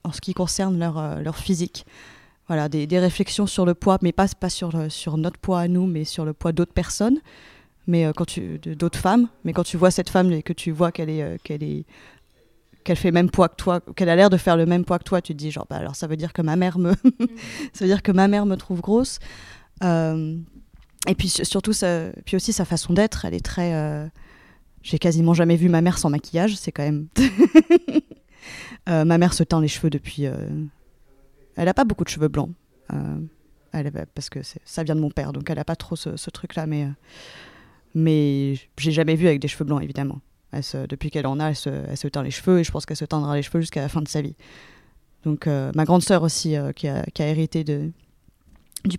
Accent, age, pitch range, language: French, 20-39, 150-180 Hz, French